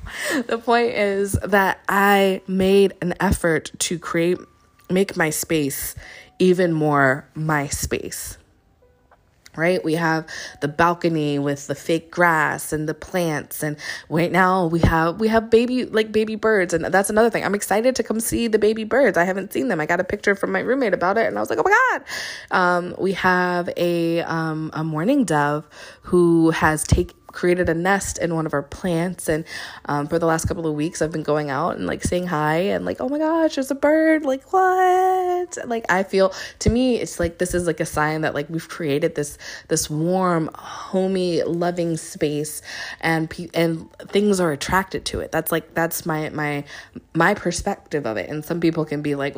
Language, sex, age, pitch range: English, female, 20-39, 150-190 Hz